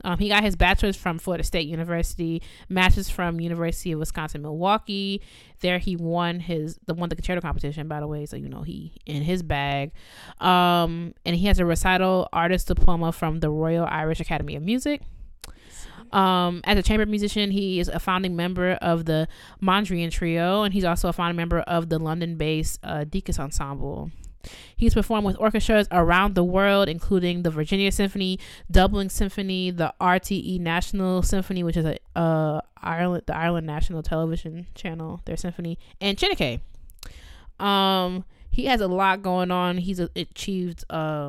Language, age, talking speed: English, 20-39, 165 wpm